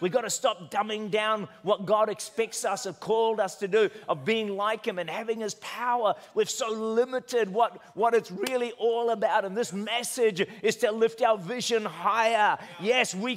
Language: English